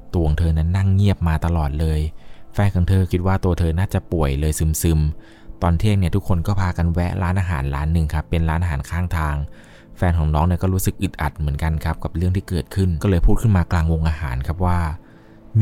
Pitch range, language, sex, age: 85-100 Hz, Thai, male, 20-39